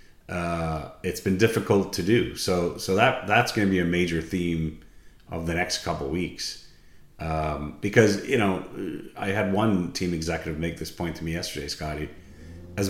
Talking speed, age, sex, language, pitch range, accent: 175 wpm, 30-49, male, English, 85-95 Hz, American